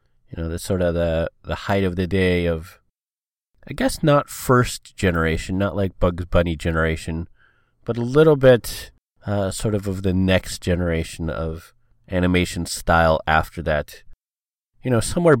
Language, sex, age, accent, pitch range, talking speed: English, male, 30-49, American, 85-105 Hz, 160 wpm